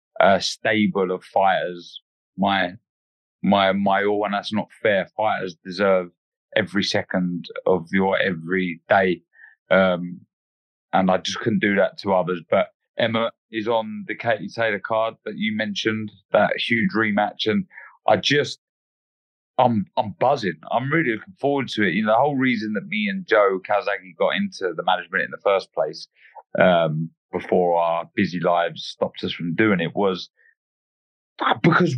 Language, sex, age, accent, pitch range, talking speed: English, male, 30-49, British, 90-120 Hz, 160 wpm